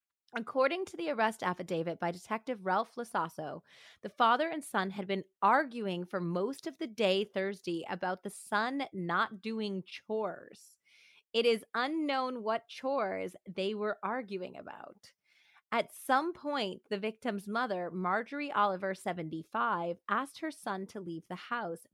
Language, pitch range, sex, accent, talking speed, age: English, 180-230 Hz, female, American, 145 wpm, 30-49